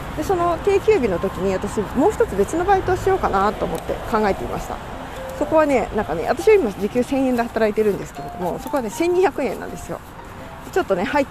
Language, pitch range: Japanese, 195-270 Hz